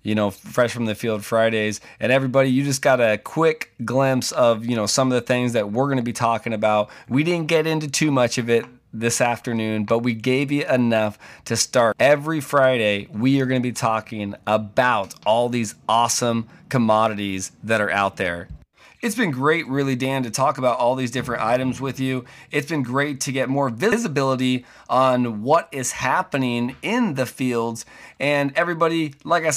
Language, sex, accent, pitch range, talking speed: English, male, American, 120-160 Hz, 195 wpm